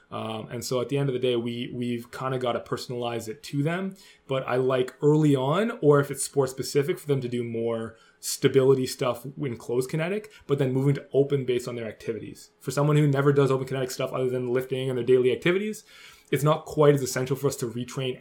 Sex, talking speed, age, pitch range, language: male, 235 wpm, 20-39, 120-145 Hz, English